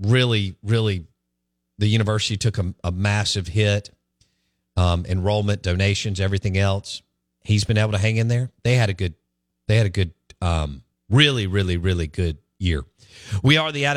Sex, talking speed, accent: male, 170 wpm, American